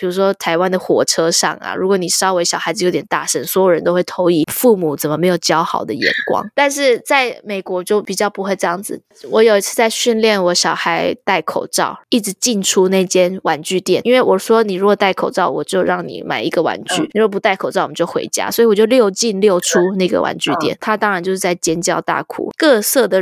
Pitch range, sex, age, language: 180-220 Hz, female, 20-39, Chinese